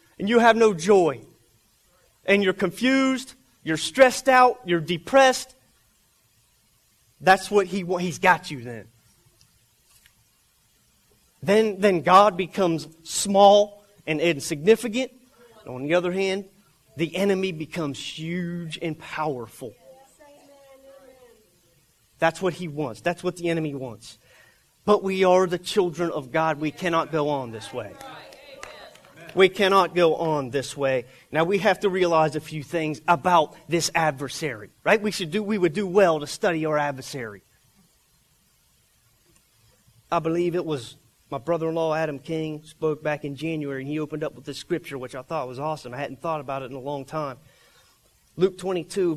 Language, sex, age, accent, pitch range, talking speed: English, male, 30-49, American, 145-190 Hz, 150 wpm